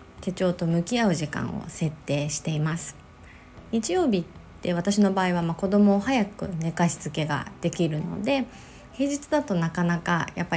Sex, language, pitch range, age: female, Japanese, 165-250 Hz, 20-39